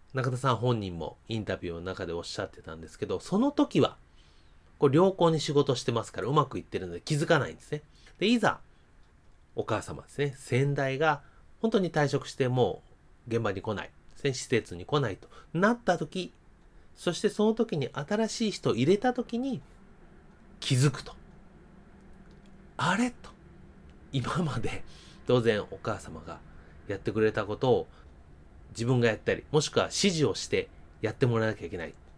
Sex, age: male, 30-49